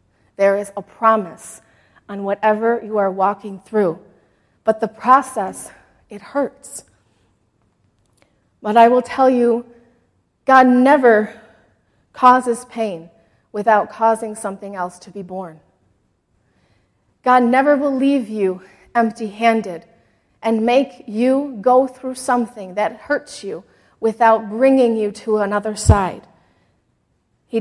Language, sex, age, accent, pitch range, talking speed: English, female, 30-49, American, 200-255 Hz, 115 wpm